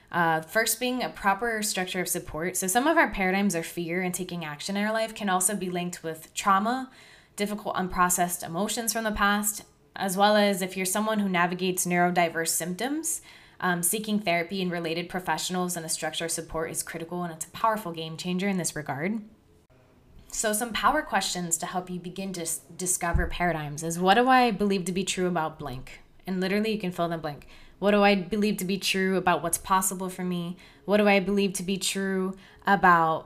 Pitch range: 170-210 Hz